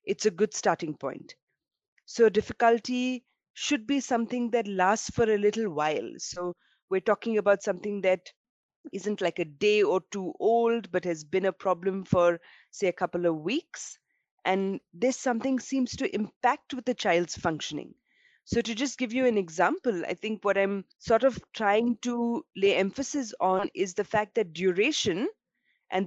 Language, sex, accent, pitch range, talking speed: English, female, Indian, 180-240 Hz, 170 wpm